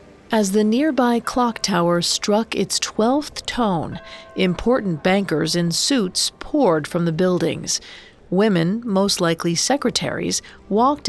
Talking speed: 120 wpm